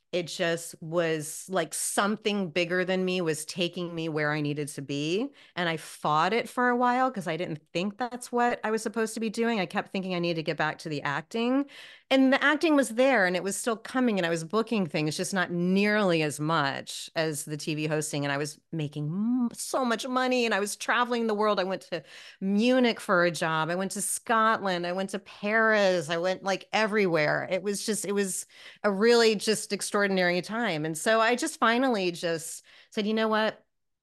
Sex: female